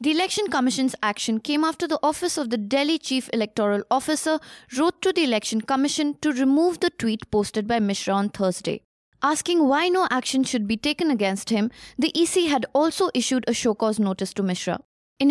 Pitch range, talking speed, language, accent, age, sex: 215-305 Hz, 190 wpm, English, Indian, 20-39, female